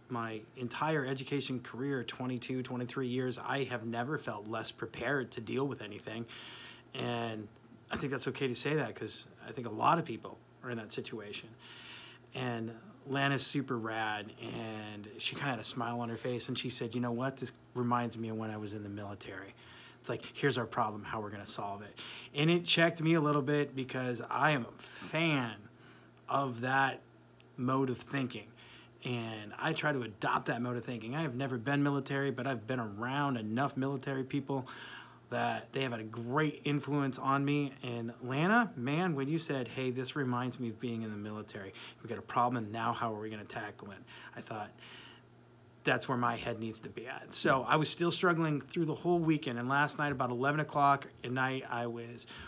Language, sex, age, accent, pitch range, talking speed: English, male, 30-49, American, 115-140 Hz, 205 wpm